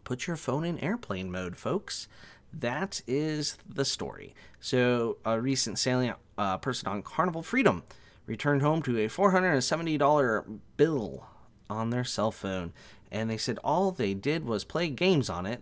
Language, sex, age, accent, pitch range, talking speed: English, male, 30-49, American, 105-155 Hz, 160 wpm